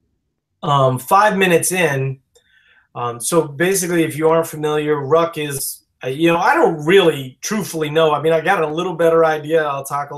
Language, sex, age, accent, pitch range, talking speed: English, male, 30-49, American, 125-150 Hz, 185 wpm